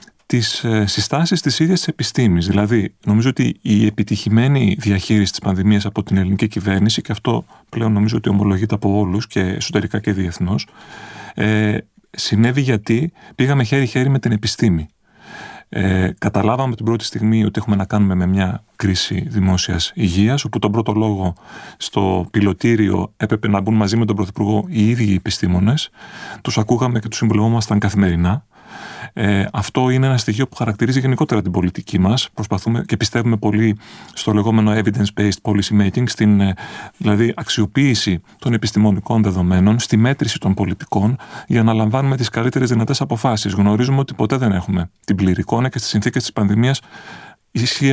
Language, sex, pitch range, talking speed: Greek, male, 100-120 Hz, 155 wpm